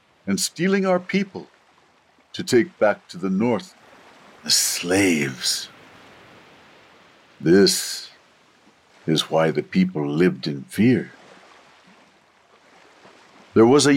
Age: 60-79